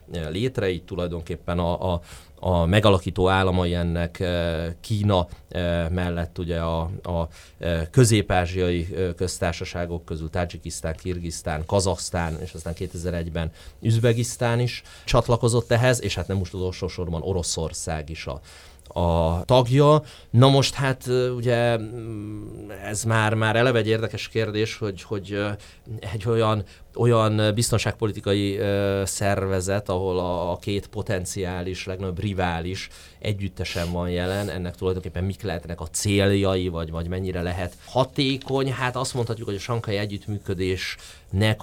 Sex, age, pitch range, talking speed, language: male, 30-49, 85-110 Hz, 120 wpm, Hungarian